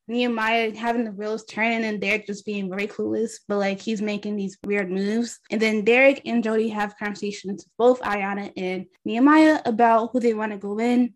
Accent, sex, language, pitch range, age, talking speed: American, female, English, 210-245 Hz, 10-29, 200 wpm